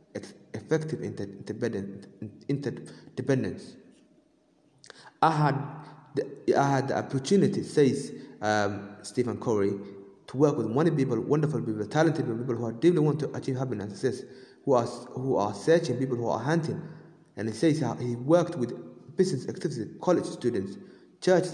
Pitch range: 115-160 Hz